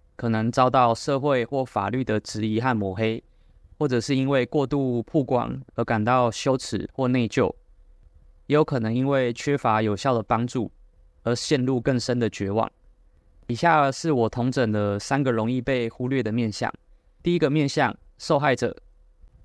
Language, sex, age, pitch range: Chinese, male, 20-39, 110-135 Hz